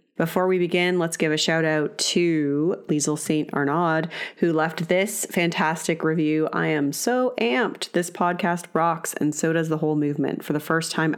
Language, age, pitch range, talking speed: English, 30-49, 150-175 Hz, 185 wpm